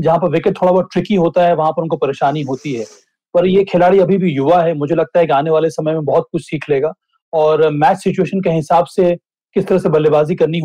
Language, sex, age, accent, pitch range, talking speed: Hindi, male, 30-49, native, 155-185 Hz, 250 wpm